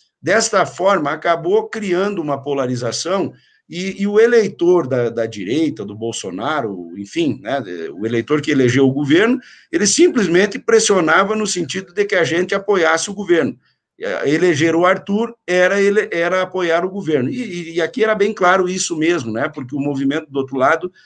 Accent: Brazilian